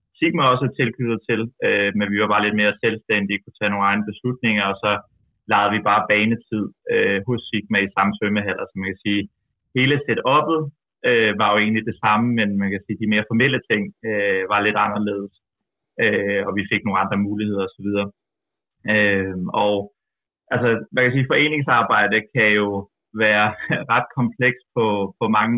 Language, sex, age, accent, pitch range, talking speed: Danish, male, 20-39, native, 105-120 Hz, 180 wpm